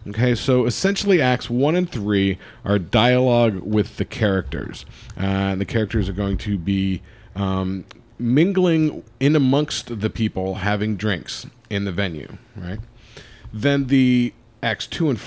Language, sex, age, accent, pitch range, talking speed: English, male, 40-59, American, 95-120 Hz, 145 wpm